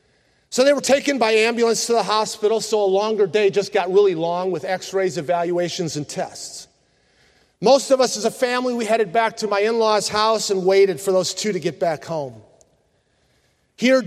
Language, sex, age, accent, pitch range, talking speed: English, male, 40-59, American, 195-255 Hz, 190 wpm